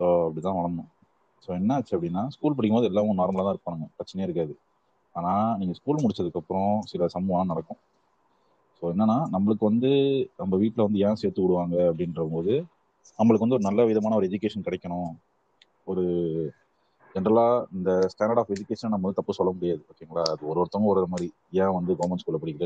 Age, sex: 30-49, male